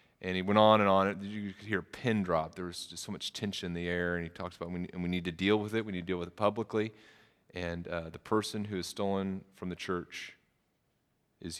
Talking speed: 260 wpm